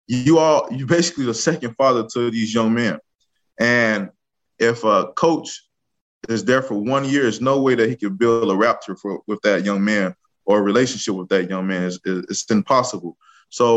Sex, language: male, English